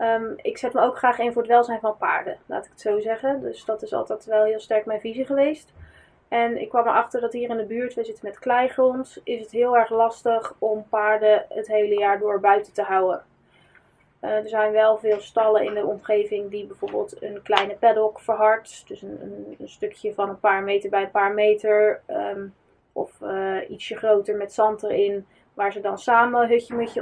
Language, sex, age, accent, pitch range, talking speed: Dutch, female, 20-39, Dutch, 210-240 Hz, 205 wpm